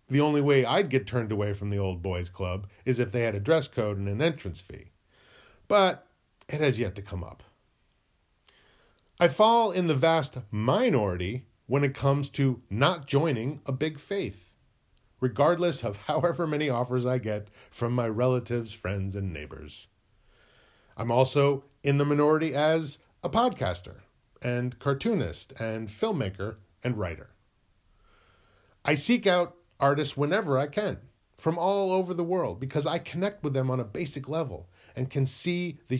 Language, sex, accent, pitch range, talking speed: English, male, American, 105-150 Hz, 160 wpm